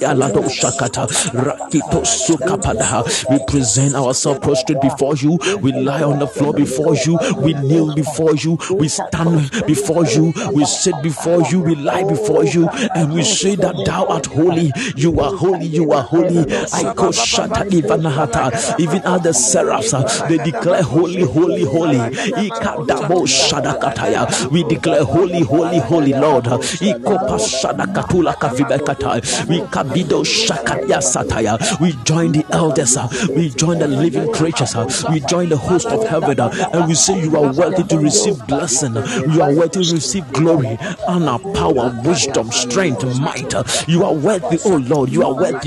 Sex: male